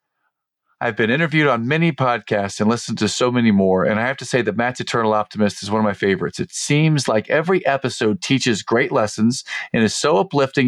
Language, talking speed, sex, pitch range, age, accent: English, 215 wpm, male, 105-135 Hz, 40-59, American